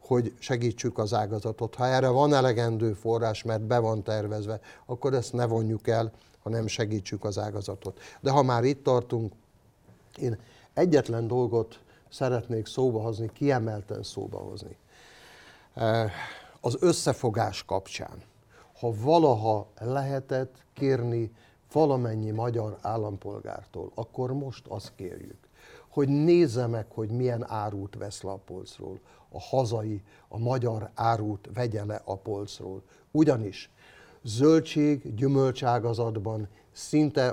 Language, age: Hungarian, 60-79